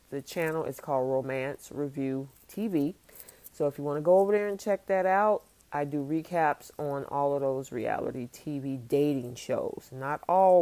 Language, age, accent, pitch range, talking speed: English, 40-59, American, 145-190 Hz, 180 wpm